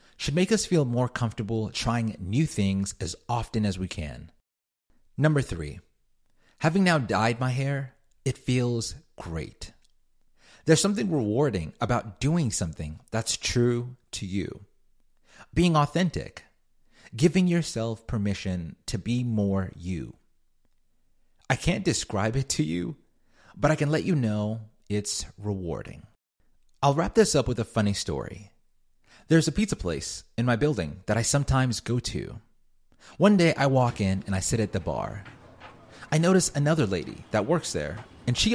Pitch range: 100-150 Hz